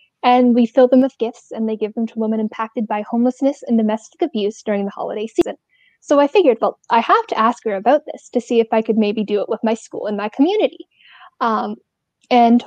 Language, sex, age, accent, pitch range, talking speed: English, female, 10-29, American, 225-310 Hz, 230 wpm